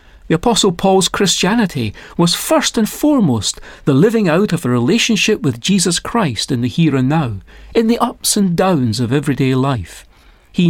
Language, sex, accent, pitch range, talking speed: English, male, British, 130-200 Hz, 175 wpm